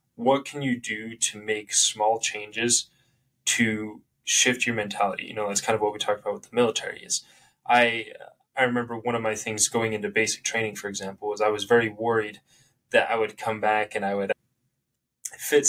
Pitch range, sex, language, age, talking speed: 105-120 Hz, male, English, 10-29, 200 wpm